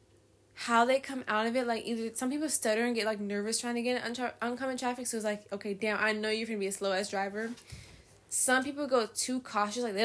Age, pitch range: 10-29, 200-265 Hz